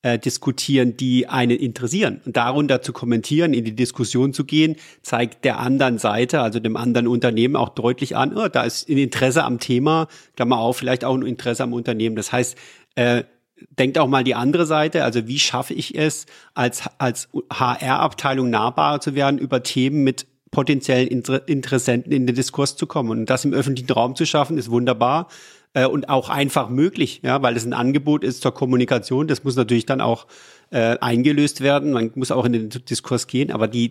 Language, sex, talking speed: German, male, 195 wpm